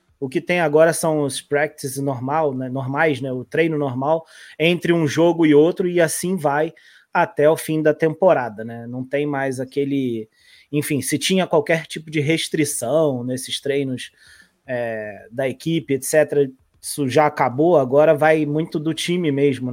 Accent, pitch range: Brazilian, 140-170 Hz